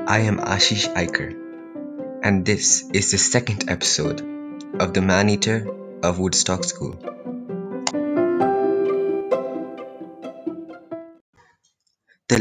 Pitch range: 100-135 Hz